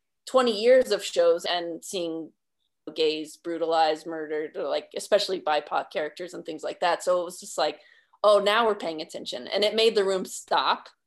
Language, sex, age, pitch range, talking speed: English, female, 20-39, 180-235 Hz, 185 wpm